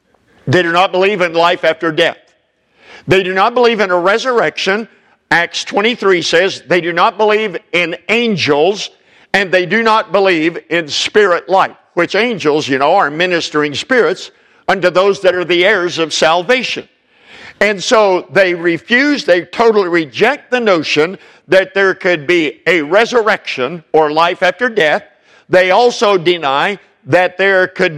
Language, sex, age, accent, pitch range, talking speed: English, male, 50-69, American, 170-220 Hz, 155 wpm